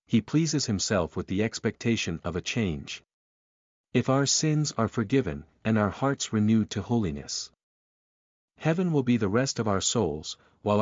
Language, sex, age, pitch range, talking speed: English, male, 50-69, 95-125 Hz, 160 wpm